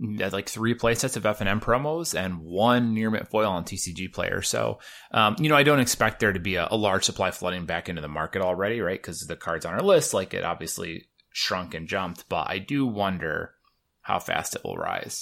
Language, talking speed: English, 220 wpm